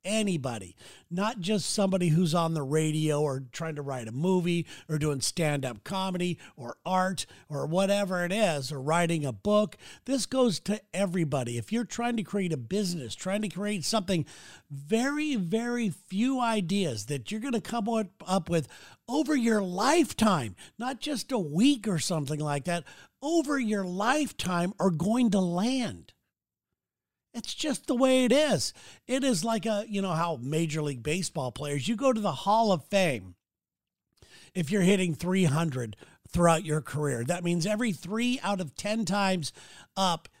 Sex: male